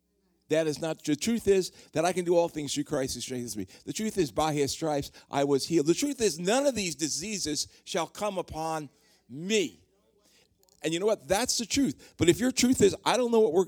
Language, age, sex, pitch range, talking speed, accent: English, 50-69, male, 160-245 Hz, 235 wpm, American